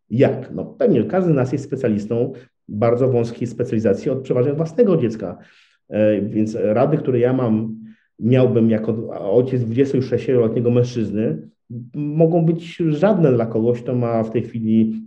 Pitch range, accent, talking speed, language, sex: 110-140 Hz, Polish, 140 wpm, English, male